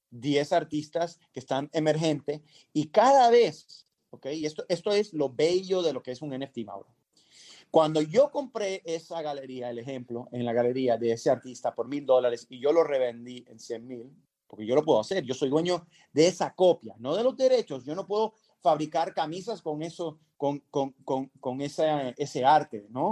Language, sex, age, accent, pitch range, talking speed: Spanish, male, 30-49, Mexican, 130-180 Hz, 195 wpm